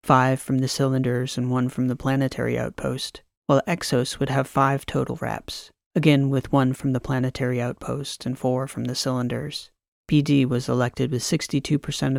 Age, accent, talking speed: 30-49, American, 165 wpm